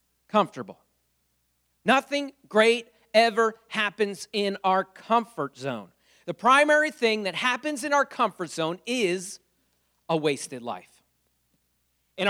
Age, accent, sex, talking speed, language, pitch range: 40-59, American, male, 110 wpm, English, 175-240 Hz